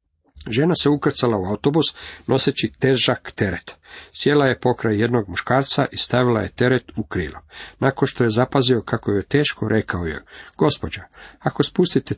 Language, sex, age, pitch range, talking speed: Croatian, male, 50-69, 110-145 Hz, 155 wpm